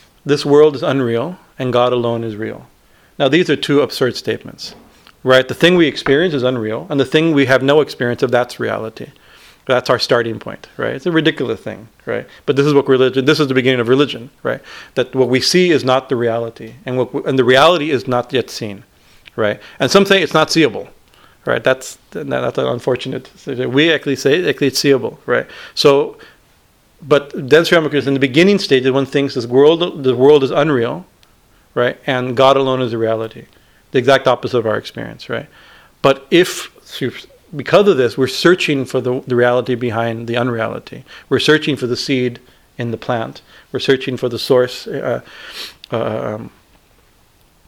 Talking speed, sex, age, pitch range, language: 190 wpm, male, 40-59, 120-145 Hz, English